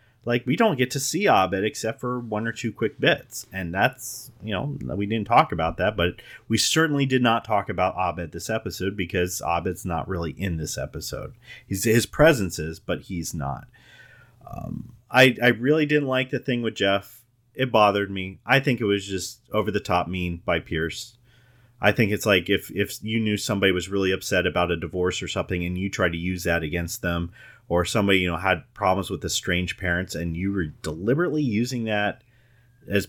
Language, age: English, 30-49